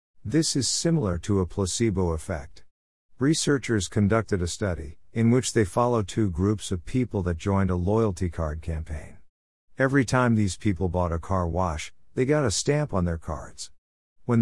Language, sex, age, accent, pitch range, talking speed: English, male, 50-69, American, 90-120 Hz, 170 wpm